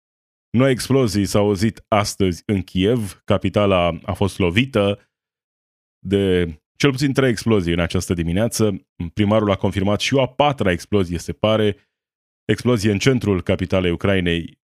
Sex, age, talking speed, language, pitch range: male, 20-39, 140 wpm, Romanian, 90-110 Hz